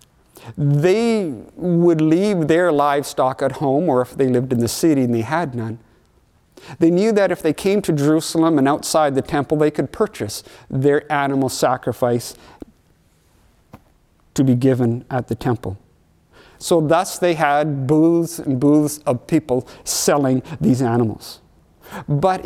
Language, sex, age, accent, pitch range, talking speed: English, male, 50-69, American, 120-170 Hz, 145 wpm